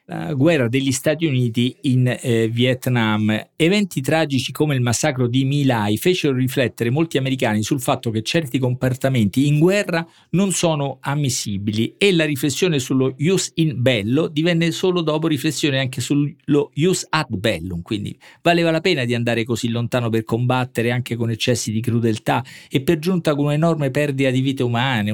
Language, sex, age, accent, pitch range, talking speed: Italian, male, 50-69, native, 115-150 Hz, 160 wpm